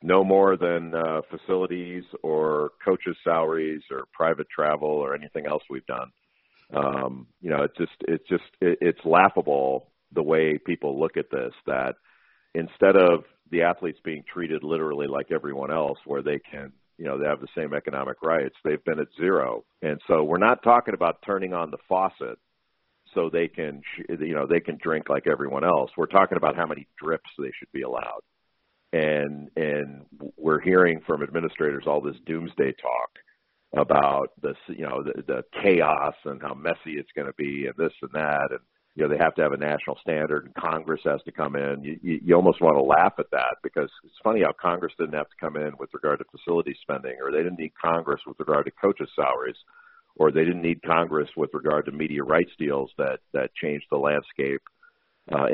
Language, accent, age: English, American, 50-69